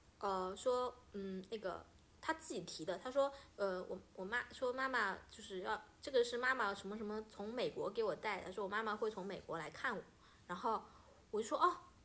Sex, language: female, Chinese